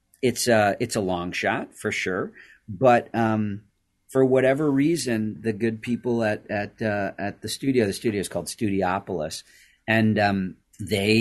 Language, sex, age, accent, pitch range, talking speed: English, male, 40-59, American, 95-125 Hz, 160 wpm